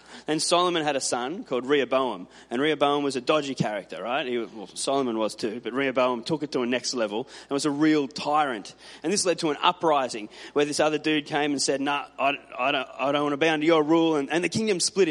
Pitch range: 125-175 Hz